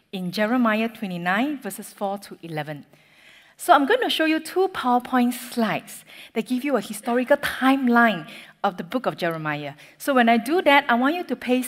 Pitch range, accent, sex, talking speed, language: 185-255 Hz, Malaysian, female, 190 wpm, English